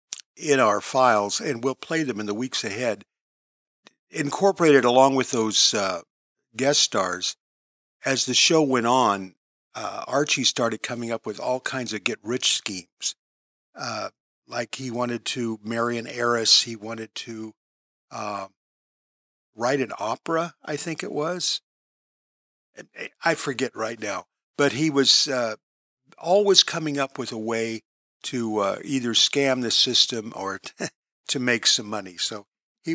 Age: 50-69